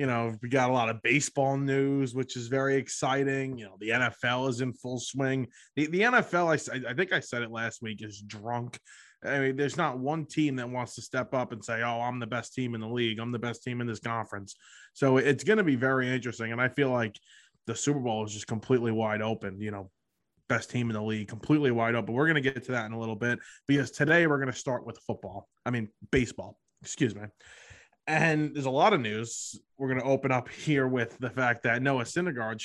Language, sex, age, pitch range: English, male, 20-39, 115-140 Hz